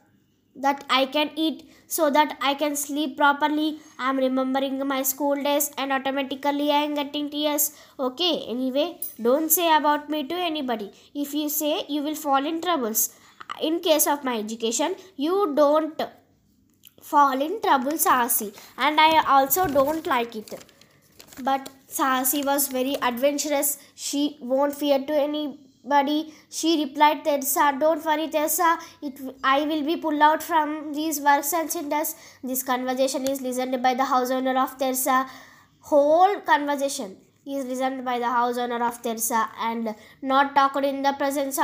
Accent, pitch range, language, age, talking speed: native, 270-300 Hz, Telugu, 20-39, 160 wpm